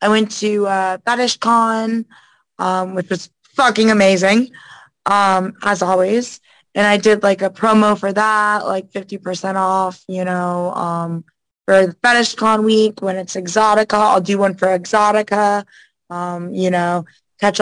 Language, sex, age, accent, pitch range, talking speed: English, female, 20-39, American, 185-215 Hz, 145 wpm